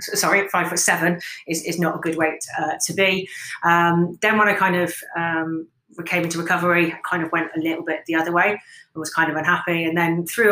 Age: 30-49